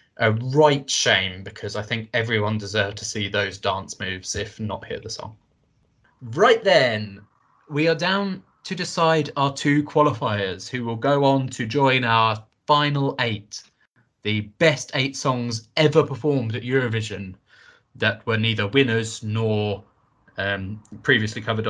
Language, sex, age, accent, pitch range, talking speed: English, male, 20-39, British, 110-140 Hz, 140 wpm